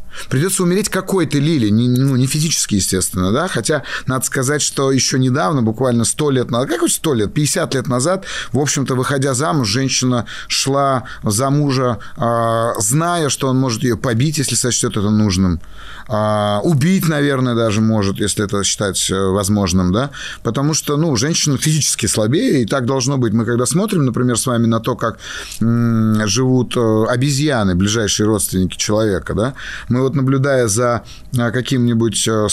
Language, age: Russian, 30-49